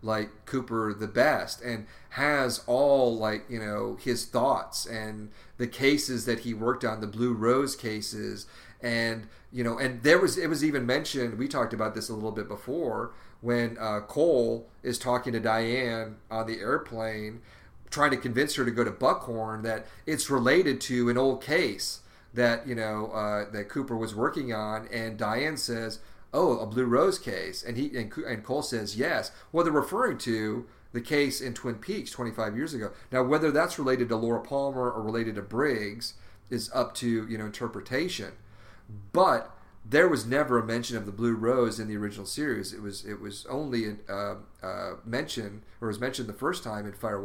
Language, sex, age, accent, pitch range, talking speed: English, male, 40-59, American, 110-125 Hz, 190 wpm